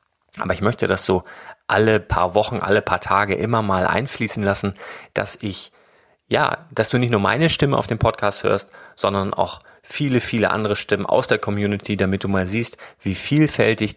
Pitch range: 95-110 Hz